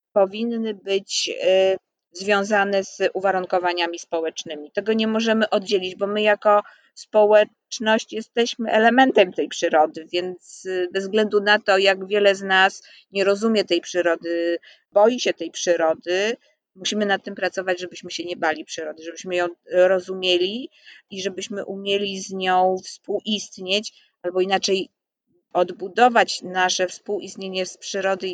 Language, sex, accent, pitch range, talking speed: Polish, female, native, 185-215 Hz, 125 wpm